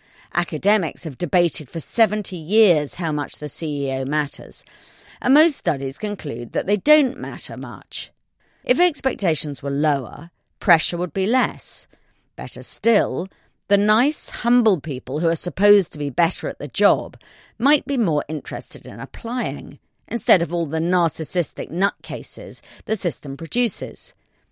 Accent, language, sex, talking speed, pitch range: British, English, female, 140 wpm, 145-205 Hz